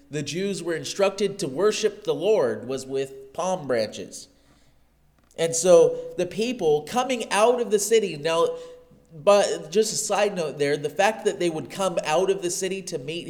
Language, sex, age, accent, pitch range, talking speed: English, male, 30-49, American, 140-205 Hz, 180 wpm